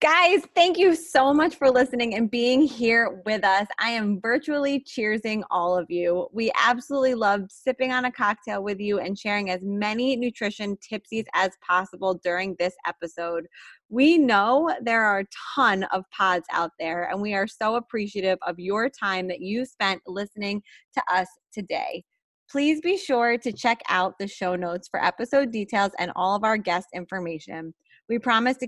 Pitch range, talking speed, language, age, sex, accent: 190-245 Hz, 180 wpm, English, 20-39, female, American